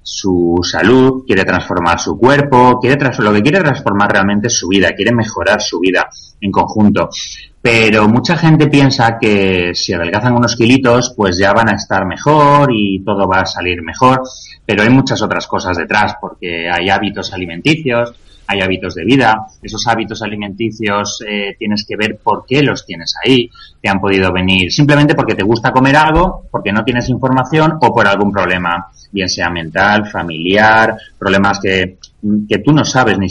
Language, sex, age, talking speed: Spanish, male, 30-49, 175 wpm